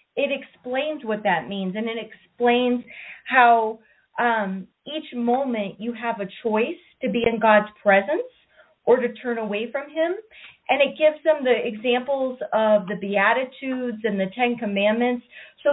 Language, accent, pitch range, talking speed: English, American, 210-260 Hz, 155 wpm